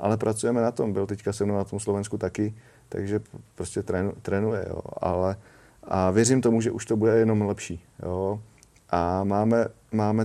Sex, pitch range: male, 100-115 Hz